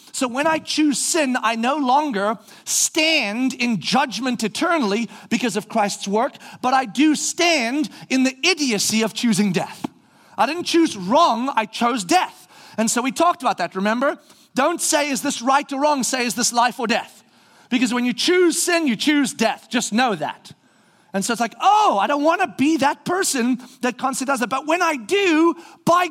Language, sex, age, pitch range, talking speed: English, male, 40-59, 230-315 Hz, 195 wpm